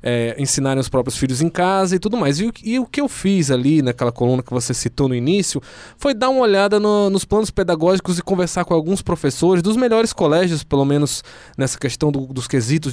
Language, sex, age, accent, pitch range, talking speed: Portuguese, male, 20-39, Brazilian, 135-190 Hz, 225 wpm